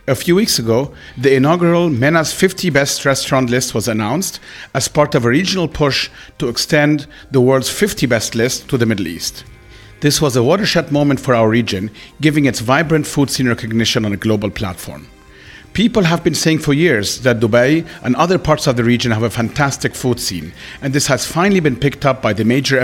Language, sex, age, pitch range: English, male, 40-59, 115-150 Hz